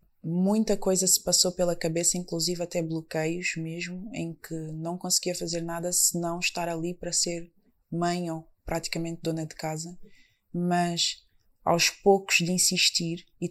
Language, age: Portuguese, 20-39